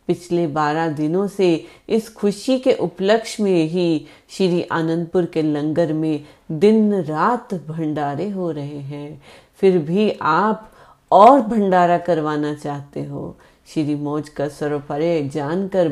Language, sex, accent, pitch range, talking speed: Hindi, female, native, 150-195 Hz, 120 wpm